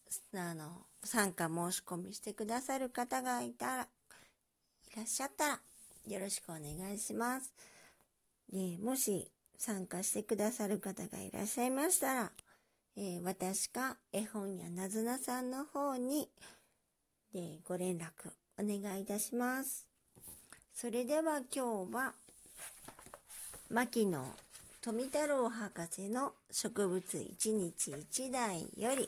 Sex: male